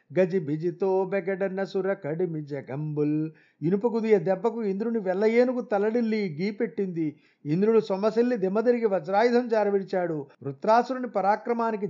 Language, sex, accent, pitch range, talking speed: Telugu, male, native, 170-205 Hz, 85 wpm